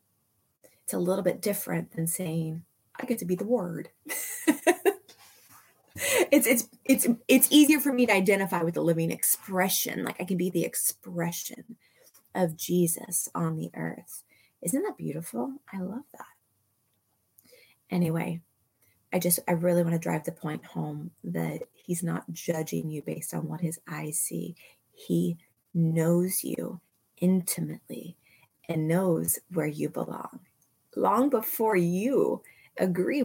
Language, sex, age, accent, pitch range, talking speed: English, female, 20-39, American, 160-210 Hz, 140 wpm